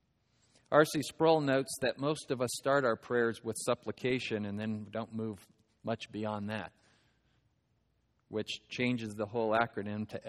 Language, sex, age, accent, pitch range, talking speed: English, male, 40-59, American, 110-130 Hz, 145 wpm